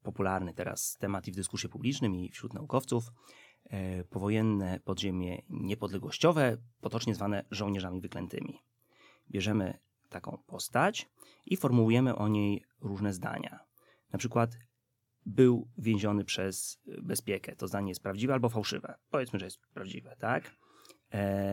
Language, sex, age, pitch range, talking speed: Polish, male, 30-49, 100-120 Hz, 120 wpm